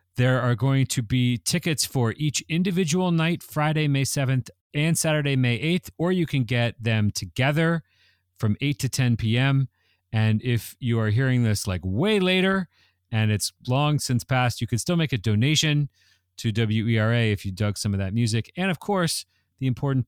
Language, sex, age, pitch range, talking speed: English, male, 40-59, 105-140 Hz, 185 wpm